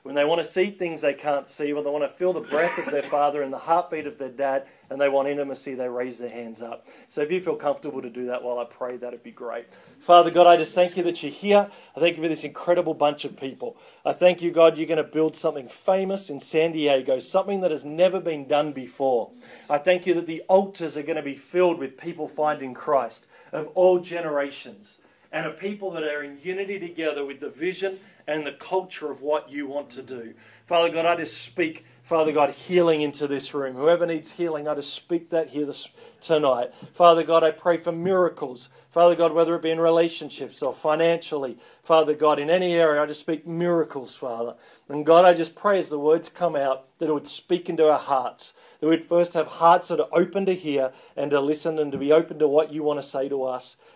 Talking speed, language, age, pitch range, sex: 235 wpm, English, 40-59, 145-170 Hz, male